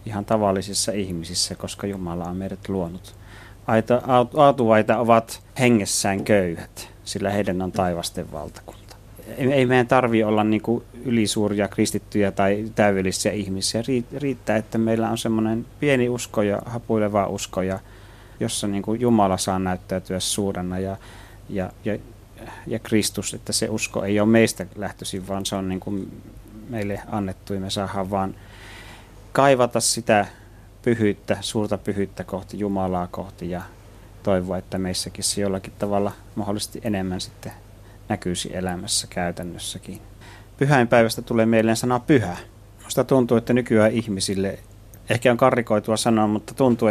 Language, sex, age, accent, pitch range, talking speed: Finnish, male, 30-49, native, 100-115 Hz, 130 wpm